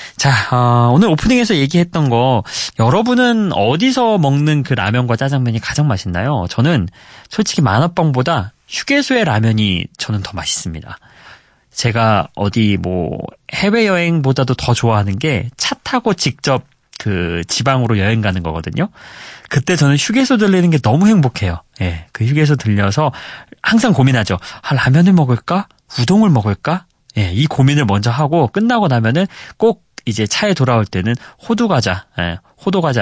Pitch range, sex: 105-155 Hz, male